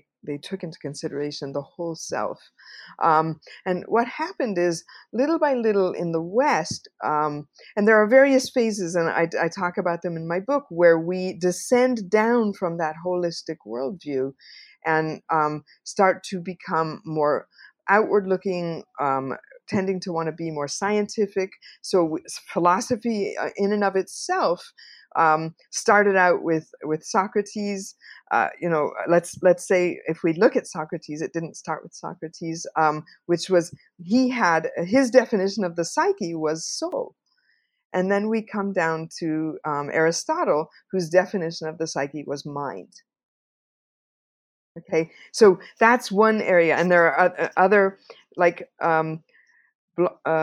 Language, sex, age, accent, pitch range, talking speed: English, female, 50-69, American, 160-210 Hz, 145 wpm